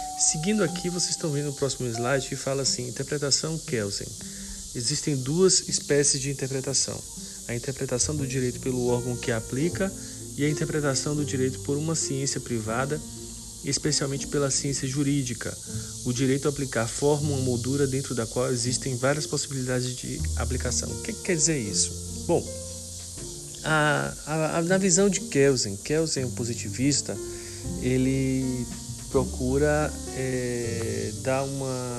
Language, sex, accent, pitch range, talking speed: Portuguese, male, Brazilian, 115-150 Hz, 145 wpm